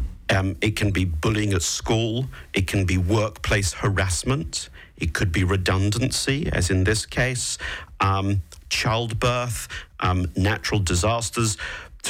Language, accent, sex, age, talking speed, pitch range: English, British, male, 50-69, 130 wpm, 95-125 Hz